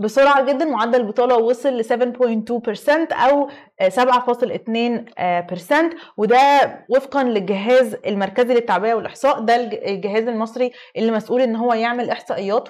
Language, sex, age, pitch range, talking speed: Arabic, female, 20-39, 215-265 Hz, 115 wpm